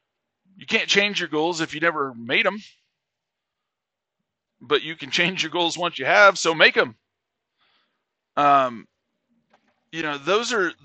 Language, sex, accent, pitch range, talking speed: English, male, American, 135-185 Hz, 150 wpm